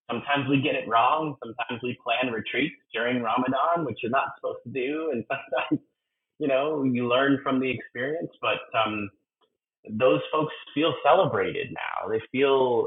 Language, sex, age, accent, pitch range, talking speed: English, male, 30-49, American, 95-125 Hz, 165 wpm